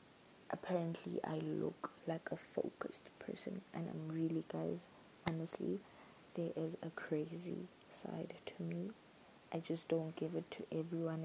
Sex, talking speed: female, 140 wpm